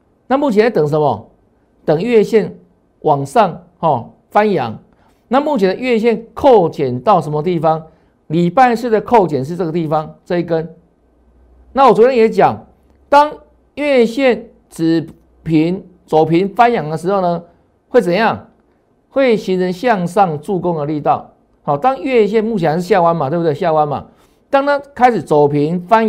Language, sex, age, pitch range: Chinese, male, 50-69, 160-225 Hz